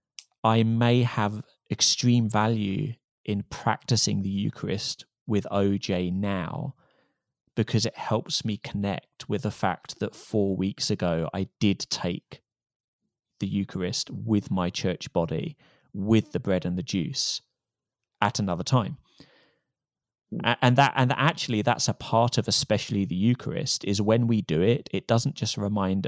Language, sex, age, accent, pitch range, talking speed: English, male, 30-49, British, 100-120 Hz, 145 wpm